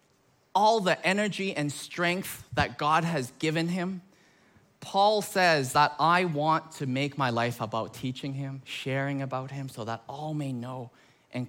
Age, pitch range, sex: 20-39, 125-170 Hz, male